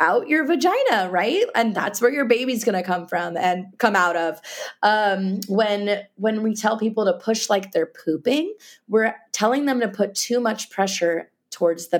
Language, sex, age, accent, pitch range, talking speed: English, female, 20-39, American, 165-210 Hz, 185 wpm